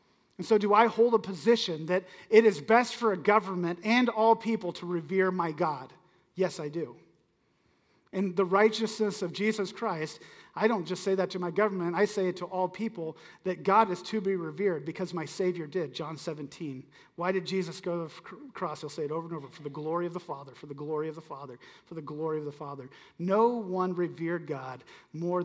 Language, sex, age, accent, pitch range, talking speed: English, male, 40-59, American, 165-205 Hz, 215 wpm